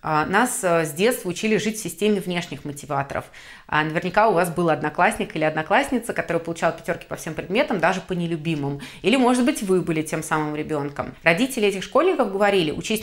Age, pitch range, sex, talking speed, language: 30-49, 165-215 Hz, female, 175 wpm, Russian